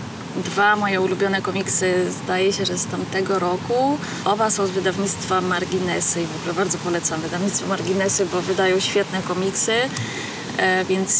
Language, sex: Polish, female